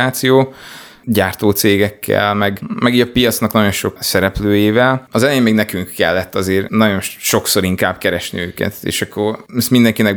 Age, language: 20-39, Hungarian